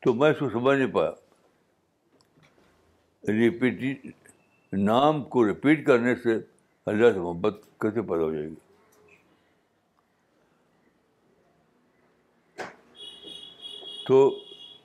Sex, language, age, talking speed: male, Urdu, 60-79, 85 wpm